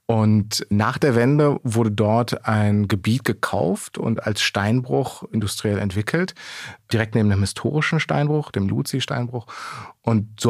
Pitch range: 105-125 Hz